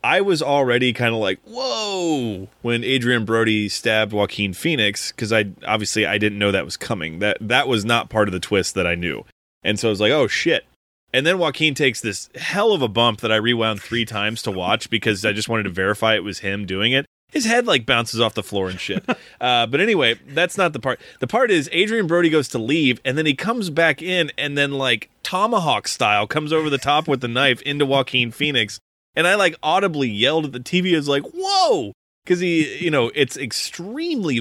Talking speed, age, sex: 225 wpm, 20-39, male